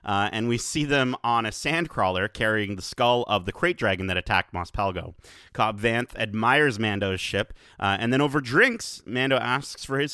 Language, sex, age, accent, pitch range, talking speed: English, male, 30-49, American, 100-130 Hz, 200 wpm